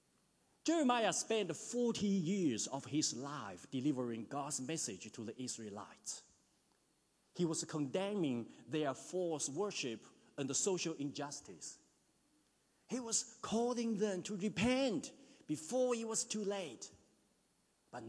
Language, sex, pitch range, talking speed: English, male, 150-235 Hz, 115 wpm